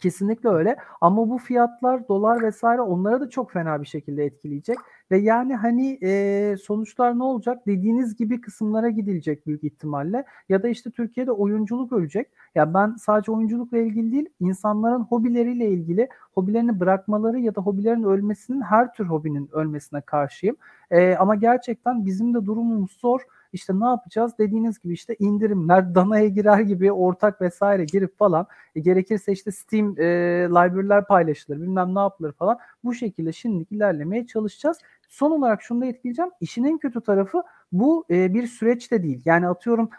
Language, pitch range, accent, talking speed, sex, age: Turkish, 185-235 Hz, native, 160 wpm, male, 40-59